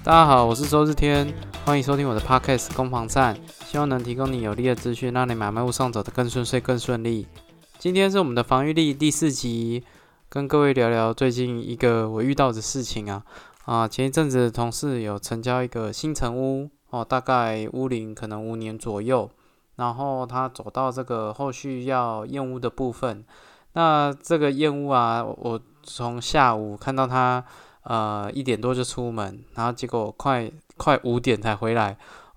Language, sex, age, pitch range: Chinese, male, 20-39, 115-135 Hz